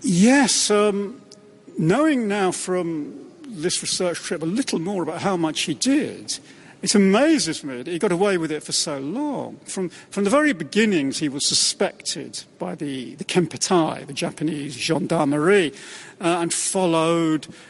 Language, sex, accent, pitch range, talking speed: English, male, British, 155-210 Hz, 155 wpm